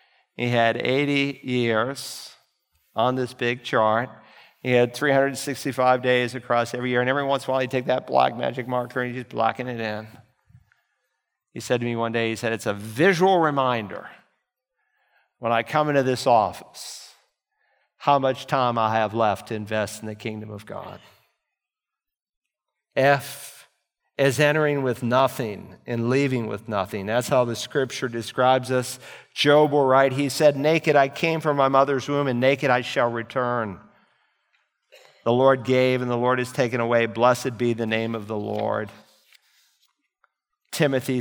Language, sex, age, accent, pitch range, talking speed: English, male, 50-69, American, 115-135 Hz, 165 wpm